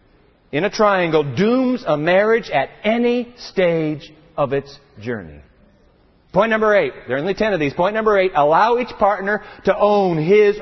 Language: English